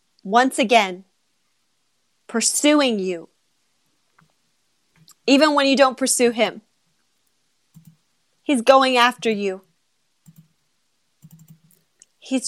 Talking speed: 70 wpm